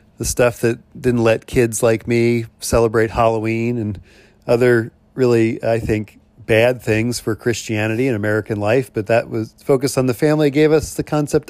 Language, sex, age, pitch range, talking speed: English, male, 40-59, 115-145 Hz, 170 wpm